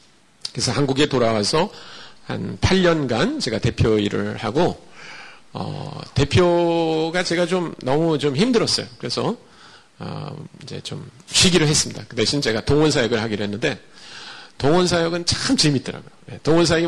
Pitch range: 110-165 Hz